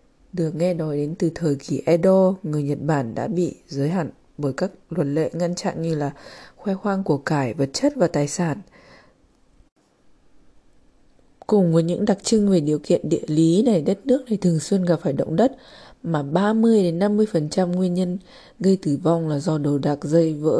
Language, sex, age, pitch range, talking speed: Vietnamese, female, 20-39, 145-190 Hz, 190 wpm